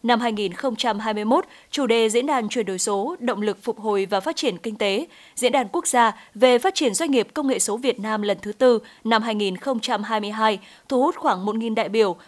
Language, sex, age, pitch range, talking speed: Vietnamese, female, 20-39, 215-265 Hz, 210 wpm